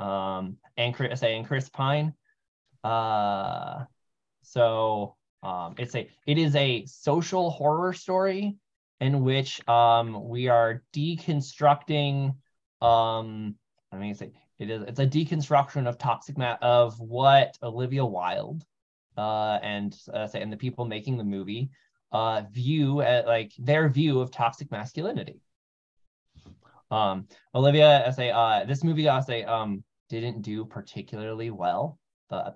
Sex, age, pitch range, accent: male, 20-39, 115-140 Hz, American